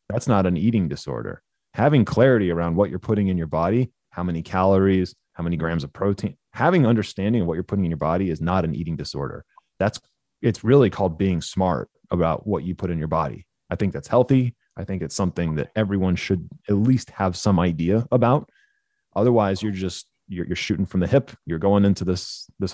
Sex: male